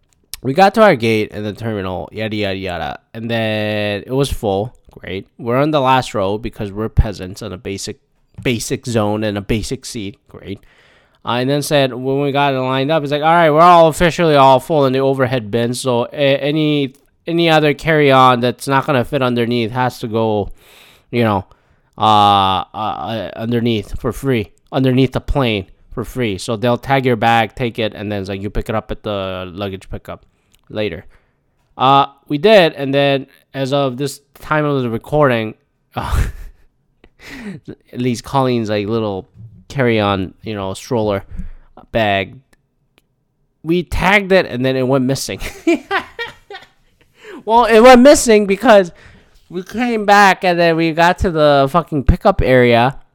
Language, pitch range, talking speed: English, 105-145 Hz, 170 wpm